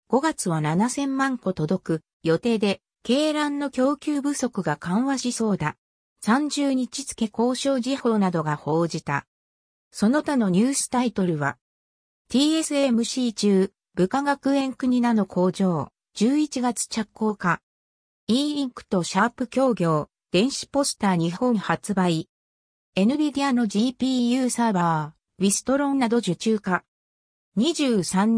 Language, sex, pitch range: Japanese, female, 175-260 Hz